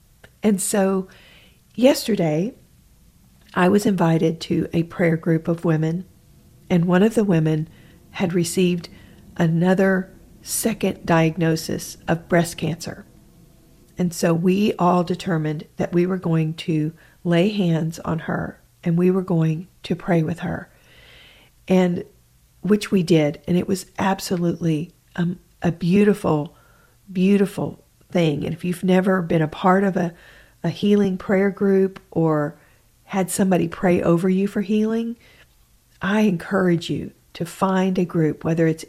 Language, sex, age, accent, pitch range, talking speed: English, female, 40-59, American, 165-190 Hz, 140 wpm